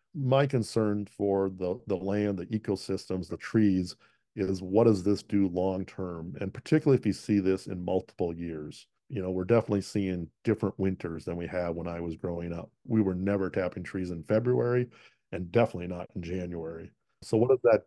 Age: 40-59